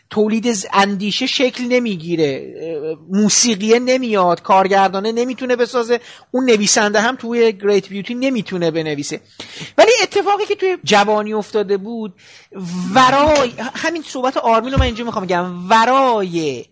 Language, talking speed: Persian, 120 wpm